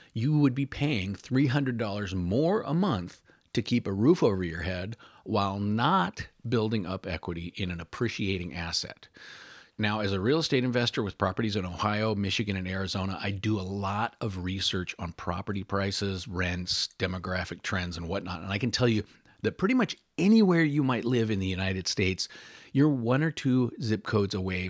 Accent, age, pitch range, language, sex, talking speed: American, 40-59, 95-120 Hz, English, male, 180 wpm